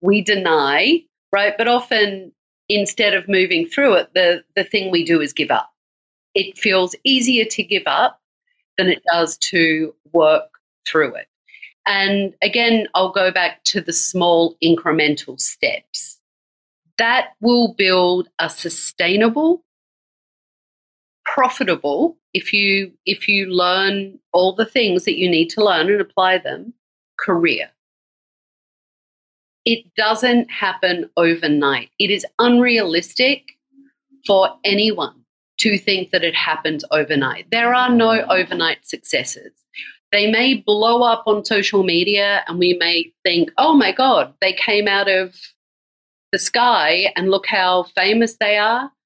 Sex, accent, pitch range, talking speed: female, Australian, 180-235 Hz, 135 wpm